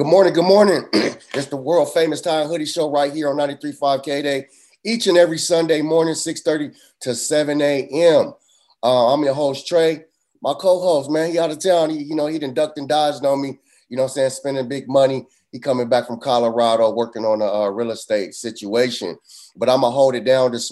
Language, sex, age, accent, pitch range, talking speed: English, male, 30-49, American, 120-140 Hz, 215 wpm